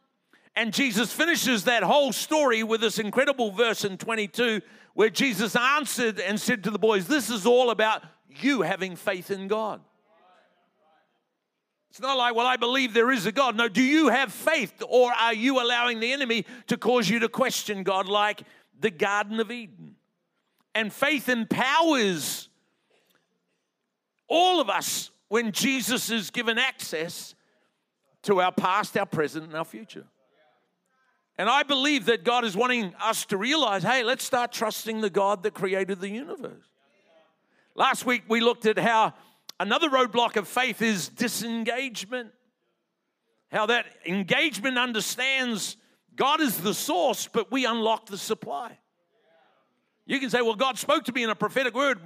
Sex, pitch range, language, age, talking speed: male, 210-255 Hz, English, 50-69, 160 wpm